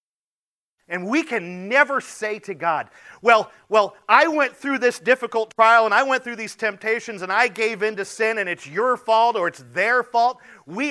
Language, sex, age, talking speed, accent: English, male, 40-59, 200 wpm, American